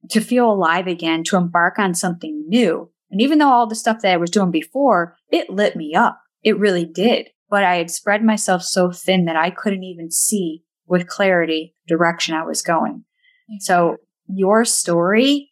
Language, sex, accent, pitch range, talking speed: English, female, American, 170-210 Hz, 185 wpm